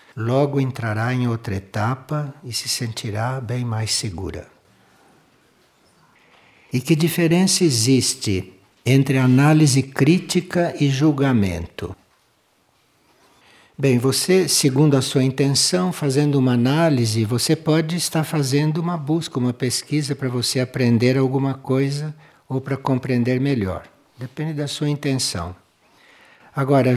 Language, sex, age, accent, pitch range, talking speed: Portuguese, male, 60-79, Brazilian, 115-150 Hz, 115 wpm